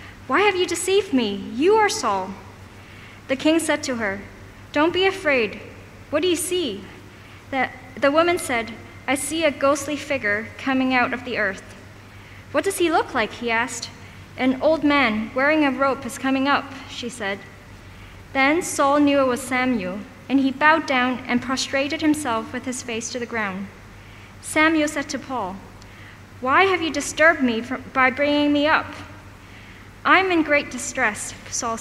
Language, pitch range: English, 230-295 Hz